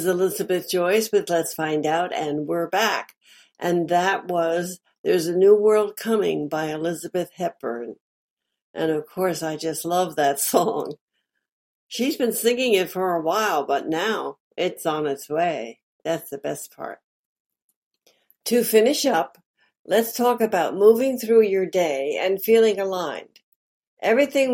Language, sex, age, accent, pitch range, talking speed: English, female, 60-79, American, 175-220 Hz, 145 wpm